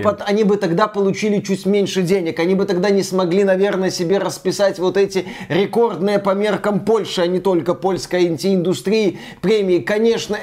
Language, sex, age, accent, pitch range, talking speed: Russian, male, 20-39, native, 175-200 Hz, 165 wpm